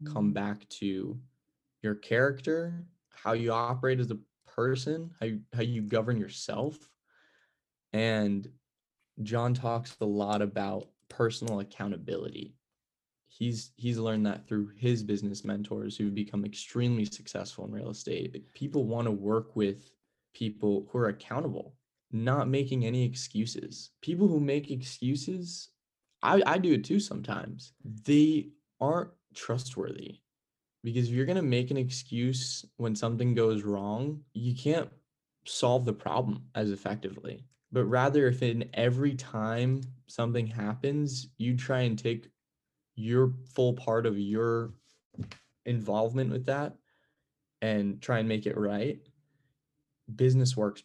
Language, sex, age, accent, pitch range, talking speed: English, male, 10-29, American, 105-130 Hz, 135 wpm